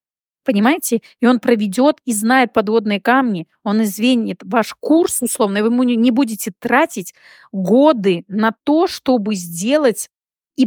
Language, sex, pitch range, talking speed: Russian, female, 195-240 Hz, 135 wpm